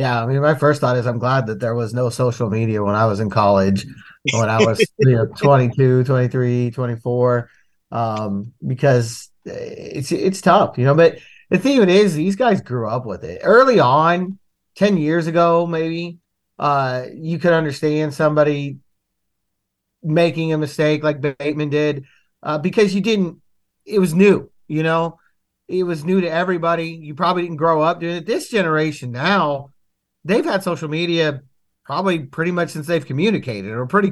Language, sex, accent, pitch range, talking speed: English, male, American, 125-170 Hz, 175 wpm